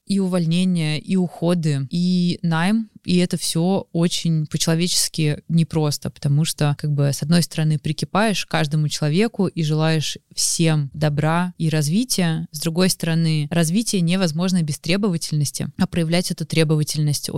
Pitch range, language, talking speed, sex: 155-180 Hz, Russian, 140 wpm, female